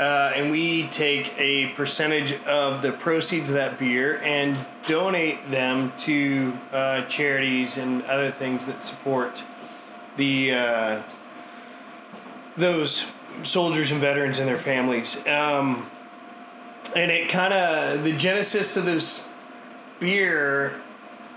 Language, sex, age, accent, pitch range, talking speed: English, male, 20-39, American, 130-165 Hz, 120 wpm